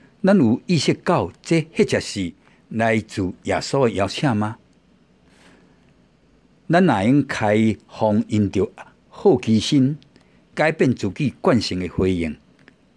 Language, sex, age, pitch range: Chinese, male, 60-79, 95-130 Hz